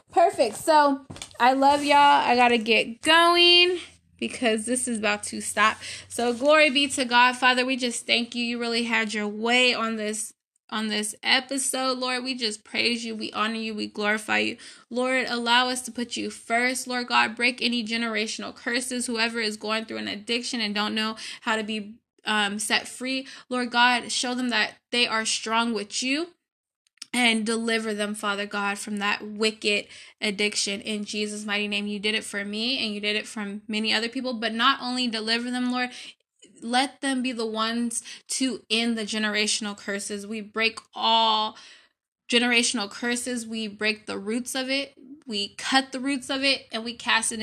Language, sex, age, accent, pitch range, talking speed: English, female, 10-29, American, 210-245 Hz, 185 wpm